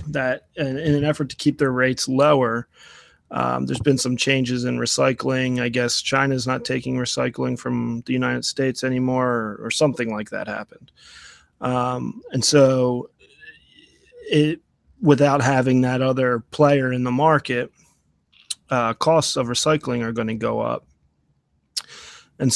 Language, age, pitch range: English, 30-49, 120-140 Hz